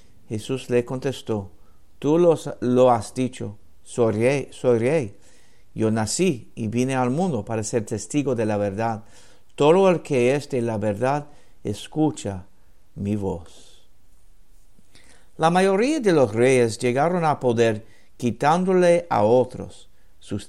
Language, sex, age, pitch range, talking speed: English, male, 60-79, 100-130 Hz, 135 wpm